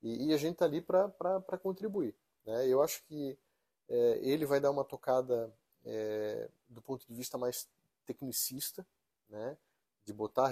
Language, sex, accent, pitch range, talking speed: Portuguese, male, Brazilian, 115-140 Hz, 155 wpm